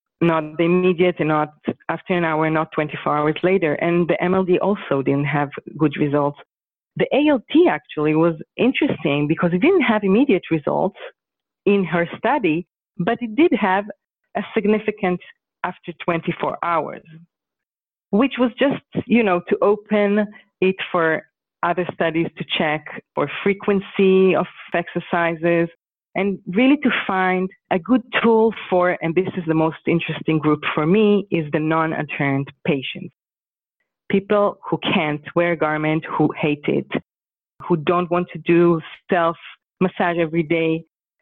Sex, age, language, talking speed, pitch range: female, 40-59, English, 145 wpm, 155-200 Hz